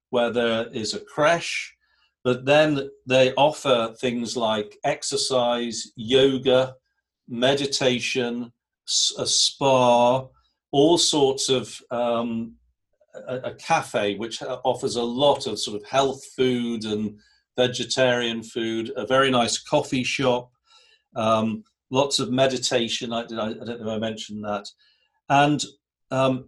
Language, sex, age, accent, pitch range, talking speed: English, male, 50-69, British, 115-140 Hz, 120 wpm